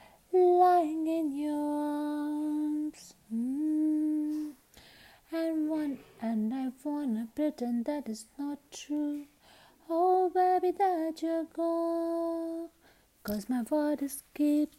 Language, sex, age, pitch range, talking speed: Hindi, female, 20-39, 290-370 Hz, 100 wpm